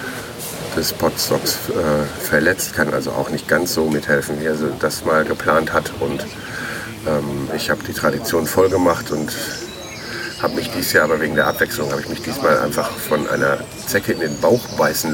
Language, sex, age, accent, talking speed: German, male, 40-59, German, 180 wpm